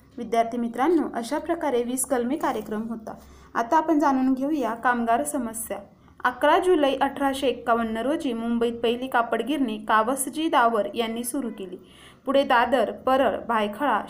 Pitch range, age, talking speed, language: 230-280 Hz, 20-39, 60 wpm, Marathi